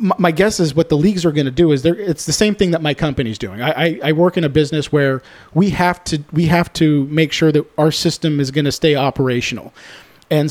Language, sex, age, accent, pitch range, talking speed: English, male, 40-59, American, 140-170 Hz, 265 wpm